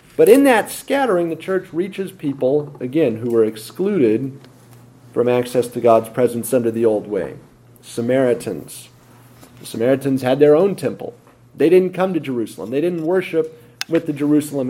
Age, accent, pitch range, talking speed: 40-59, American, 120-180 Hz, 160 wpm